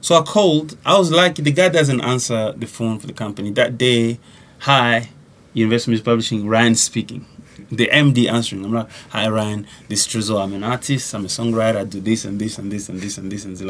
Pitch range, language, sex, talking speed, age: 105-125 Hz, English, male, 230 wpm, 20-39